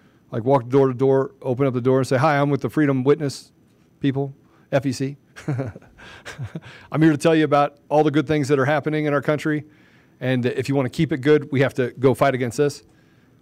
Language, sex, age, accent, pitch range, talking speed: English, male, 40-59, American, 140-220 Hz, 225 wpm